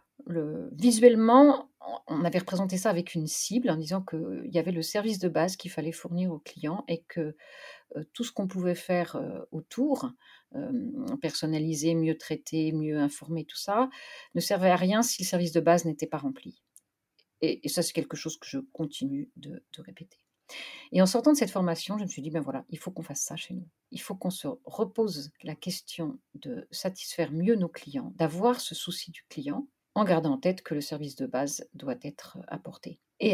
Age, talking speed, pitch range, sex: 40-59, 205 wpm, 160-255 Hz, female